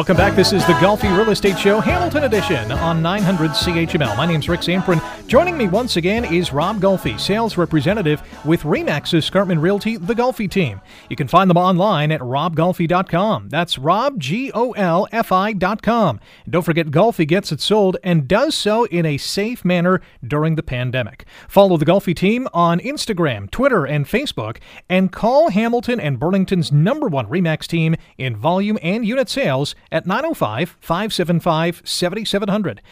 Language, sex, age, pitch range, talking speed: English, male, 30-49, 155-200 Hz, 160 wpm